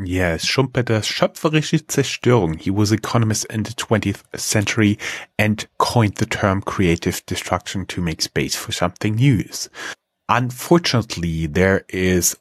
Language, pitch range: English, 85-105 Hz